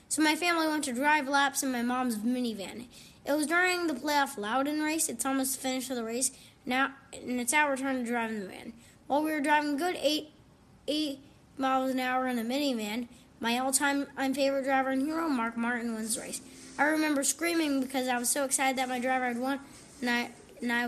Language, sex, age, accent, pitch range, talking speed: English, female, 20-39, American, 255-300 Hz, 225 wpm